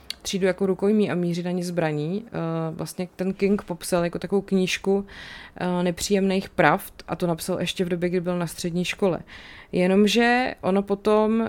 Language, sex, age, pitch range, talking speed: Czech, female, 30-49, 160-190 Hz, 160 wpm